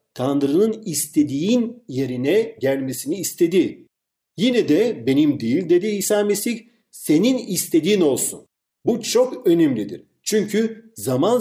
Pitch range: 145-230 Hz